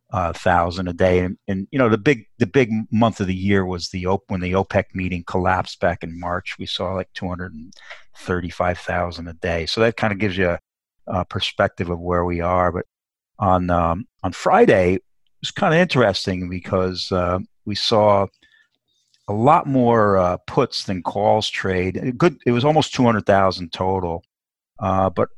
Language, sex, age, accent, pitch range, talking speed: English, male, 50-69, American, 95-120 Hz, 185 wpm